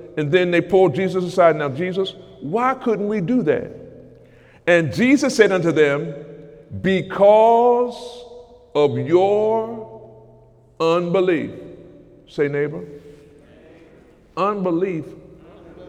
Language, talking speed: English, 95 wpm